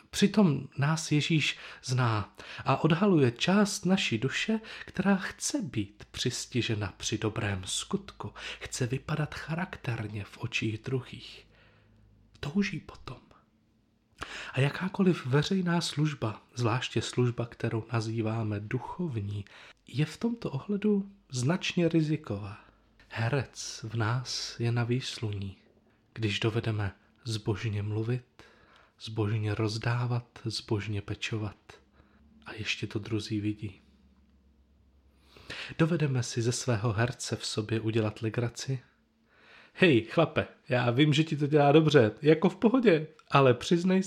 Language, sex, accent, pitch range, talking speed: Czech, male, native, 110-150 Hz, 110 wpm